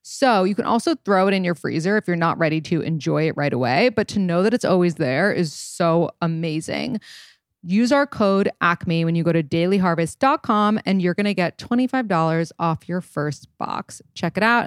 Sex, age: female, 20-39